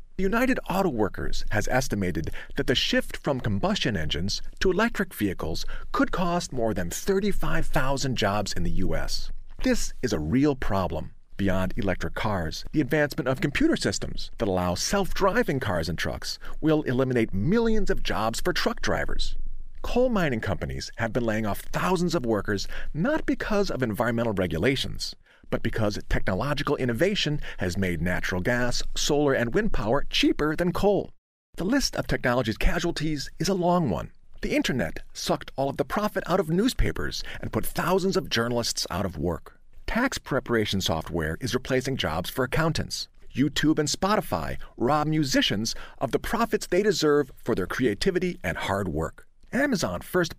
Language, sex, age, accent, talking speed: English, male, 40-59, American, 160 wpm